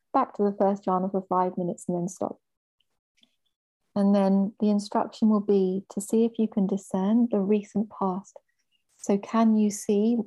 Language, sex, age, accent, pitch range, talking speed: English, female, 30-49, British, 185-210 Hz, 175 wpm